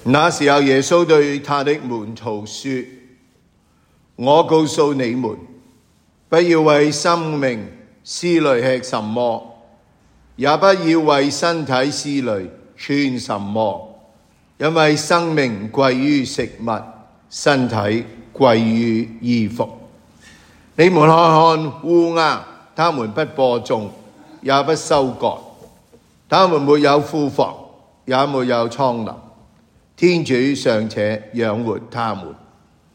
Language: English